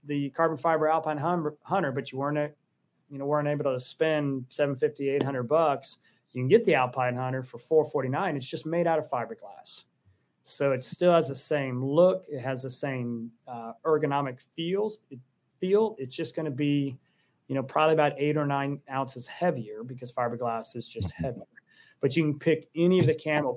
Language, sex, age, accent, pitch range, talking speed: English, male, 30-49, American, 125-150 Hz, 195 wpm